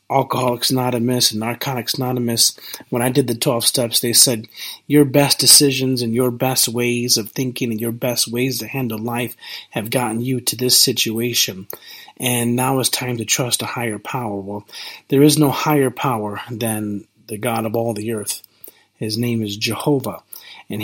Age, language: 40-59, English